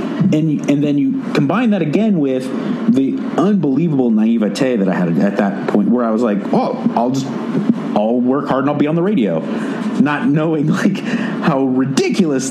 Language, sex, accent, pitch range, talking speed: English, male, American, 170-235 Hz, 180 wpm